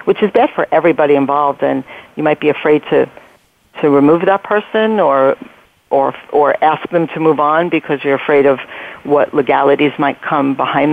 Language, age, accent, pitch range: English, 50-69, American, 140-165 Hz